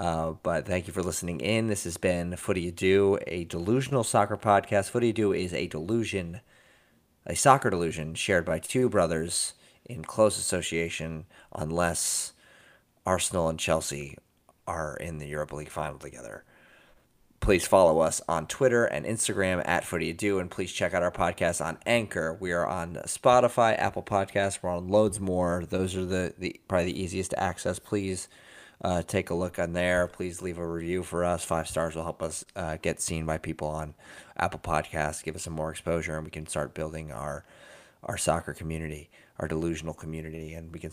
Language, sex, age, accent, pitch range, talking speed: English, male, 30-49, American, 80-95 Hz, 185 wpm